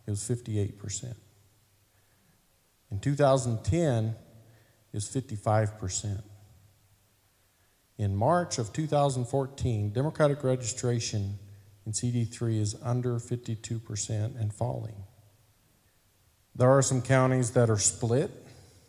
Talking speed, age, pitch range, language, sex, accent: 90 wpm, 40-59, 105-120 Hz, English, male, American